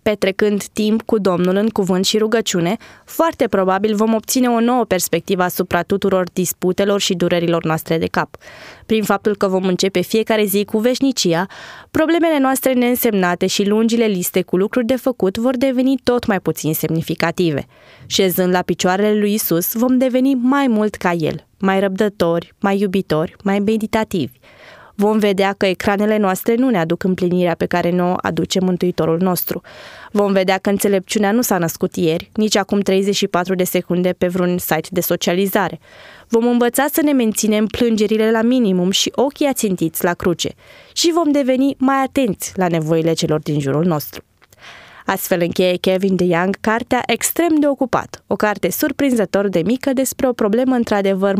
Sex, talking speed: female, 165 wpm